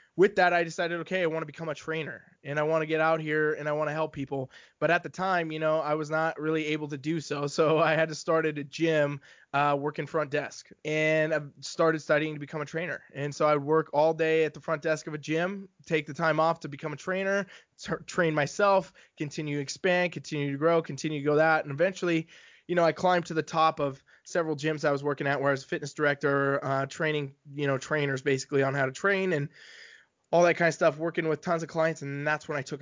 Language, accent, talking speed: English, American, 260 wpm